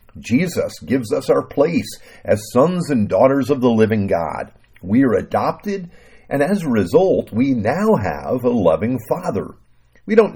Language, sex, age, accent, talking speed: English, male, 50-69, American, 160 wpm